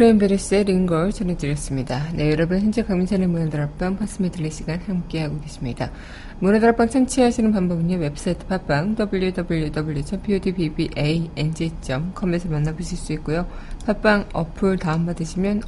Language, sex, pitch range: Korean, female, 160-200 Hz